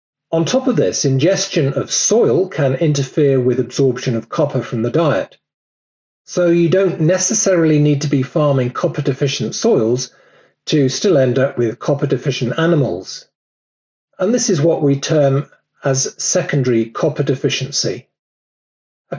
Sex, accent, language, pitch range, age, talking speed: male, British, English, 130-165 Hz, 40-59, 140 wpm